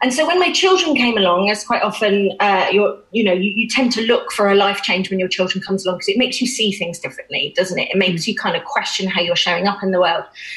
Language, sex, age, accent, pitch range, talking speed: English, female, 30-49, British, 190-245 Hz, 285 wpm